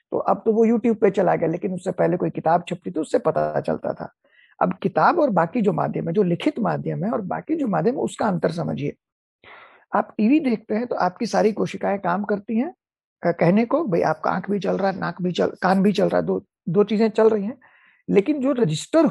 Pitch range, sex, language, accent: 175-240 Hz, male, Hindi, native